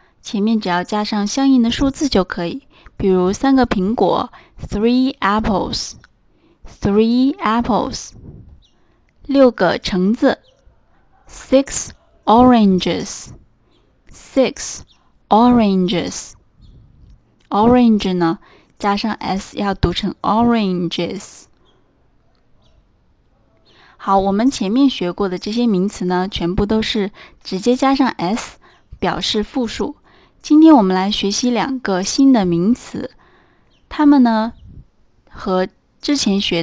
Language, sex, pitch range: Chinese, female, 185-250 Hz